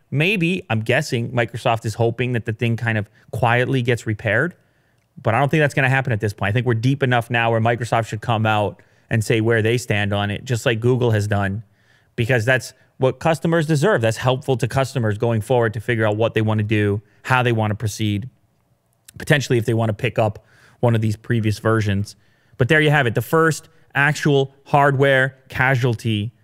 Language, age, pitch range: English, 30-49, 110-130 Hz